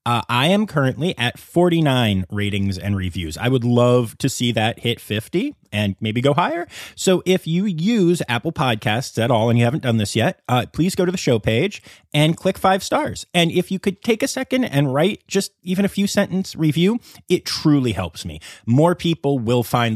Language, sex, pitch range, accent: English, male, 110-175 Hz, American